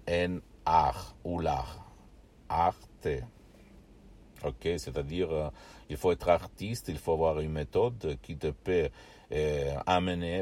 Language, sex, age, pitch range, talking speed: Italian, male, 60-79, 80-95 Hz, 125 wpm